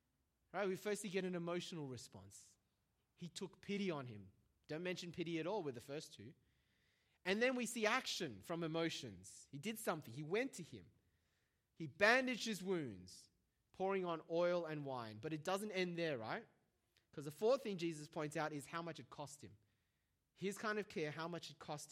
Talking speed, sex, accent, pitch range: 195 wpm, male, Australian, 145-210 Hz